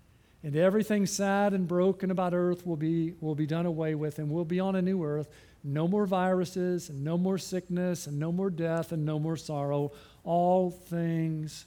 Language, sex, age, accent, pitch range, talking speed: English, male, 50-69, American, 170-210 Hz, 195 wpm